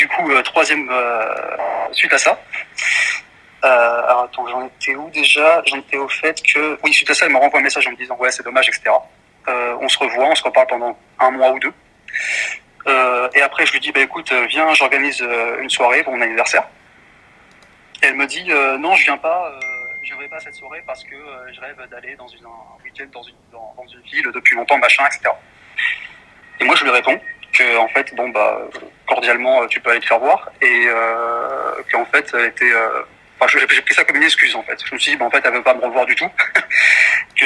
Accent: French